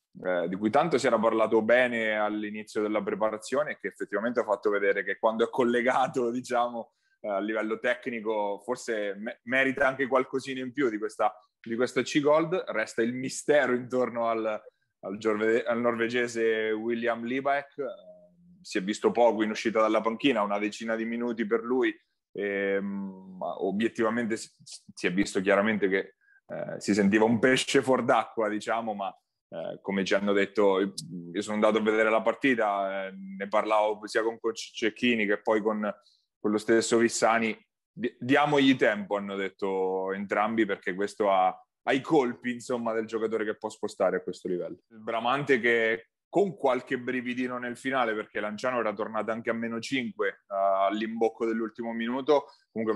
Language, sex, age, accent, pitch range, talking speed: Italian, male, 20-39, native, 105-125 Hz, 155 wpm